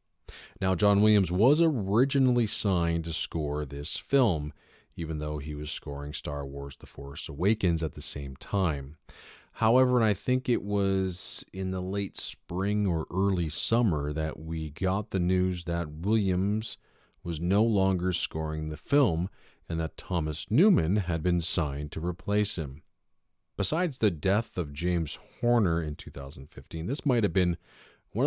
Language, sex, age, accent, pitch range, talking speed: English, male, 40-59, American, 80-105 Hz, 155 wpm